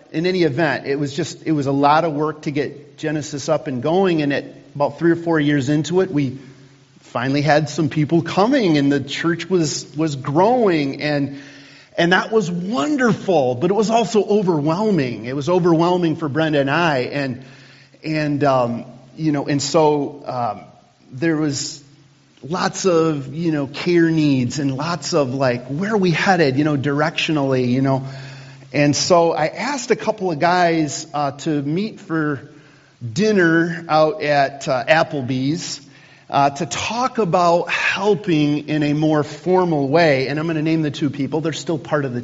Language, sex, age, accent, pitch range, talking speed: English, male, 40-59, American, 140-170 Hz, 180 wpm